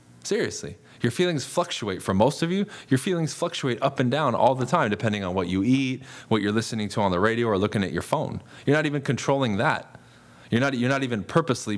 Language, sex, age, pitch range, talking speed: English, male, 20-39, 100-125 Hz, 230 wpm